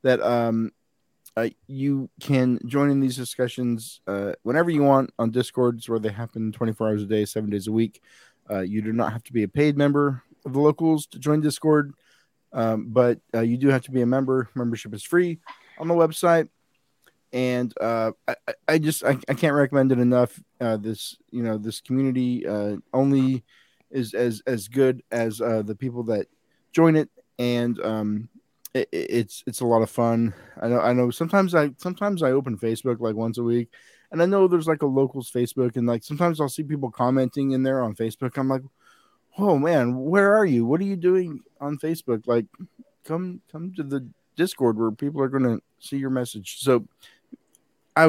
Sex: male